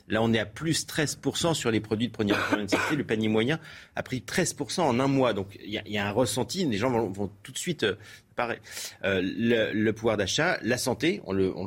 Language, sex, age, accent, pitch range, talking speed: French, male, 30-49, French, 105-145 Hz, 240 wpm